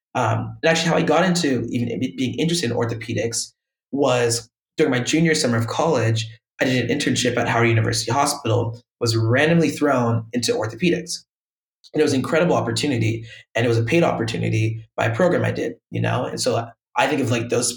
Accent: American